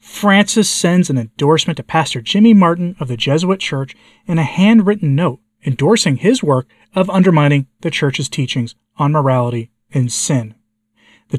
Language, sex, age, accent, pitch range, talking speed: English, male, 40-59, American, 130-180 Hz, 155 wpm